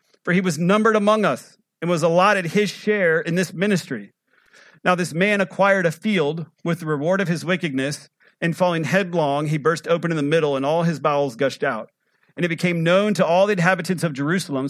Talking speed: 210 wpm